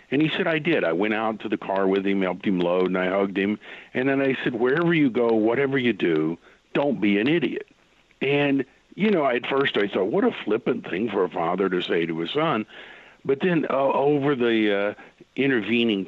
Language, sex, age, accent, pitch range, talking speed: English, male, 50-69, American, 105-135 Hz, 225 wpm